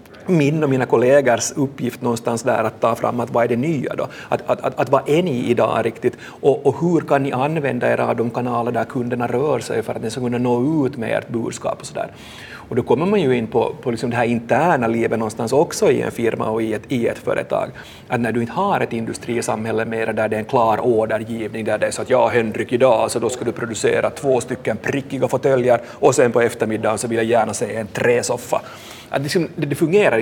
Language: Swedish